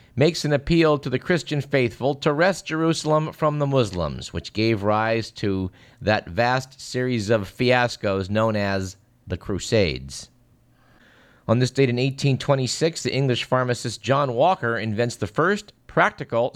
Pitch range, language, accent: 105-140 Hz, English, American